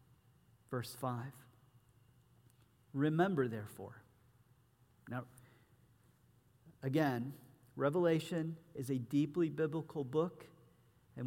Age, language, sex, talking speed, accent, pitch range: 40-59, English, male, 70 wpm, American, 125-190 Hz